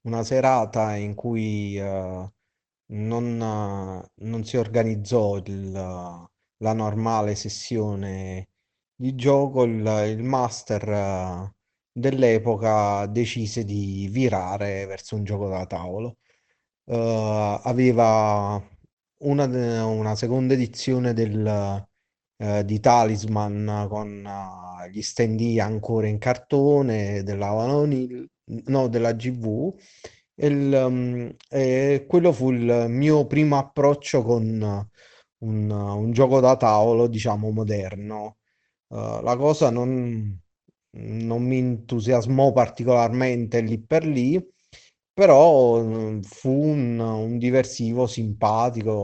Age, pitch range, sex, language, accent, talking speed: 30-49, 105-125 Hz, male, Italian, native, 105 wpm